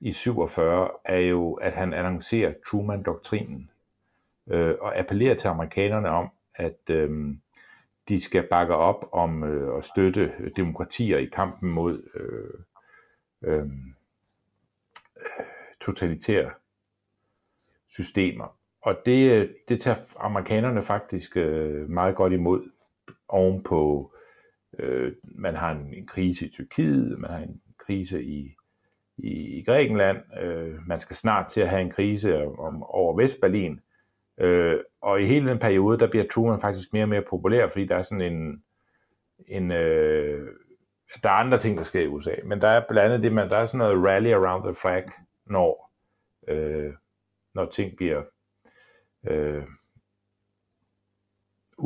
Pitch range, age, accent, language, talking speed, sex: 85-100 Hz, 60-79, native, Danish, 125 wpm, male